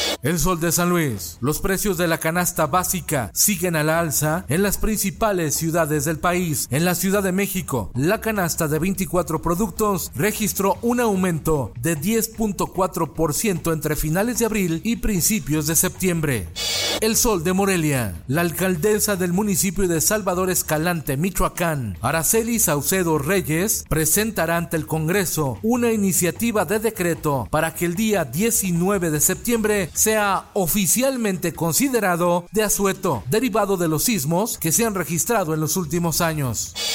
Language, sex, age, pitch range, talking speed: Spanish, male, 40-59, 160-200 Hz, 150 wpm